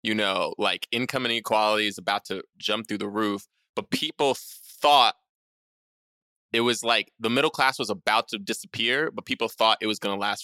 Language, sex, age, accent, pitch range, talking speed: English, male, 20-39, American, 110-150 Hz, 190 wpm